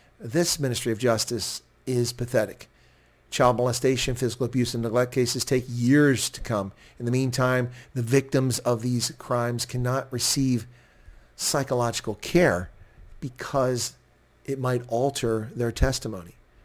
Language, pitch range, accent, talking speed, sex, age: English, 110-130 Hz, American, 125 wpm, male, 40-59